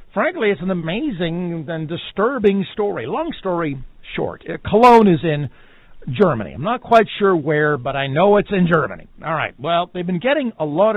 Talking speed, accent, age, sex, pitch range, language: 180 wpm, American, 60-79, male, 145-195 Hz, English